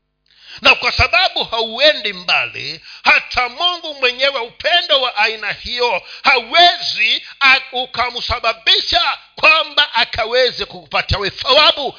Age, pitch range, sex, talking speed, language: 50-69, 205-295 Hz, male, 90 wpm, Swahili